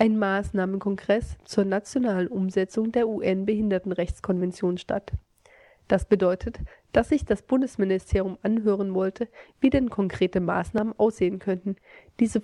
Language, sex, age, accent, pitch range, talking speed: German, female, 30-49, German, 190-220 Hz, 110 wpm